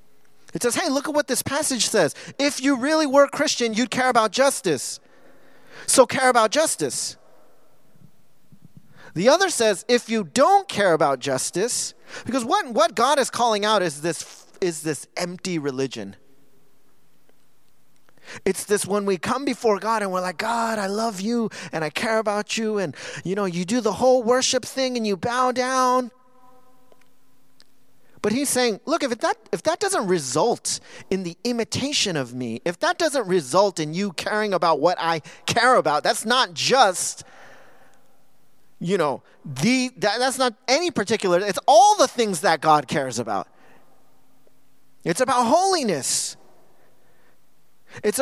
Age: 30-49